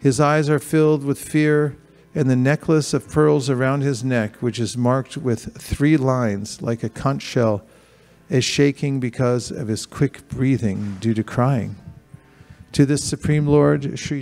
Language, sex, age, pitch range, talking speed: English, male, 50-69, 115-140 Hz, 165 wpm